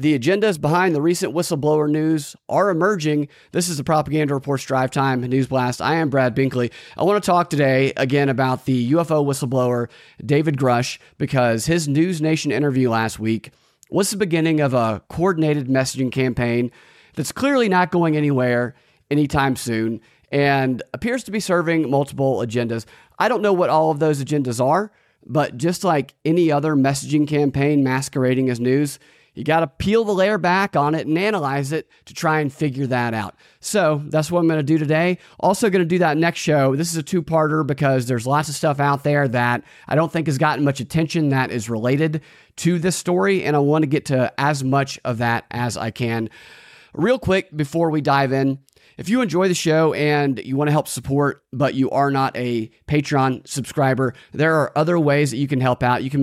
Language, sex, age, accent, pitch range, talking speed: English, male, 30-49, American, 130-160 Hz, 200 wpm